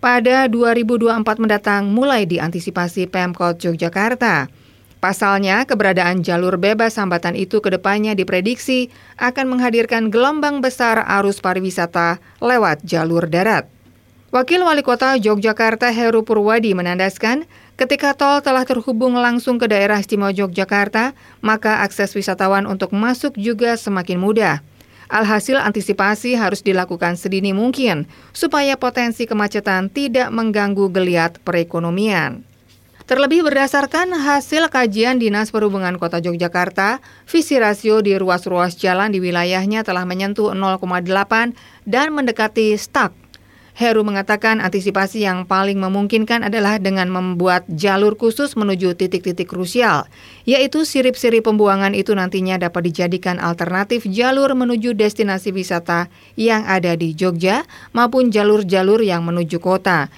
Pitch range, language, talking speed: 185-240 Hz, Indonesian, 120 wpm